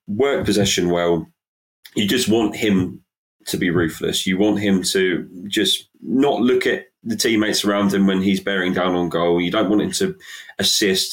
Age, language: 30-49, English